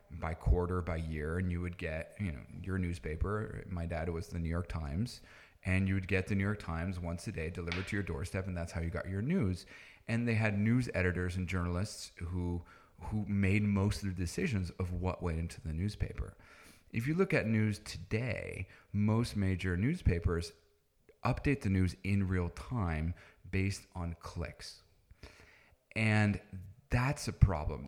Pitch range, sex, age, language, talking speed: 90-110 Hz, male, 30-49, English, 180 wpm